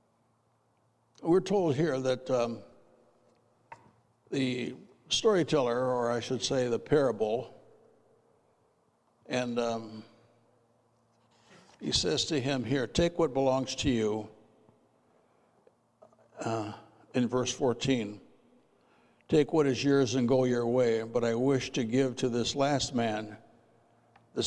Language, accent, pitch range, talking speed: English, American, 120-170 Hz, 115 wpm